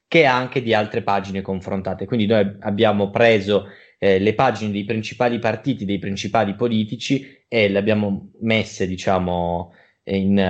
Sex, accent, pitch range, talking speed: male, native, 105-135 Hz, 145 wpm